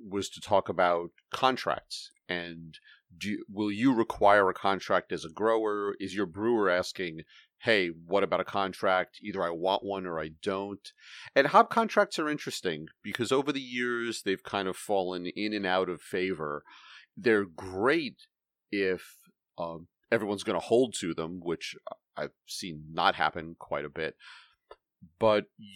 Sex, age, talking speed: male, 40-59, 155 wpm